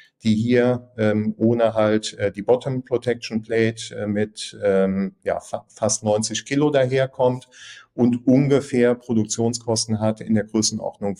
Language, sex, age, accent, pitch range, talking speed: German, male, 50-69, German, 105-125 Hz, 140 wpm